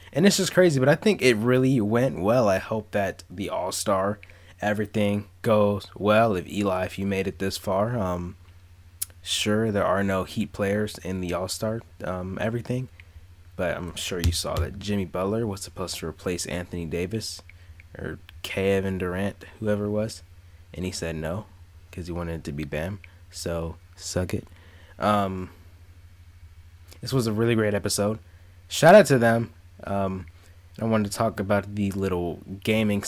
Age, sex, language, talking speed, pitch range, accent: 20-39, male, English, 170 wpm, 85-105 Hz, American